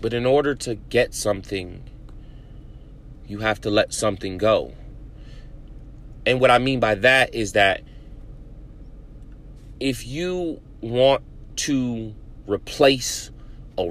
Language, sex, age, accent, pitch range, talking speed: English, male, 30-49, American, 115-140 Hz, 110 wpm